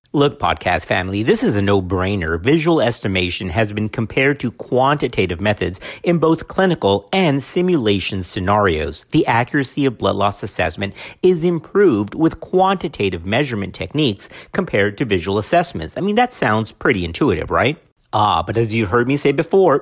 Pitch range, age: 100-165 Hz, 50-69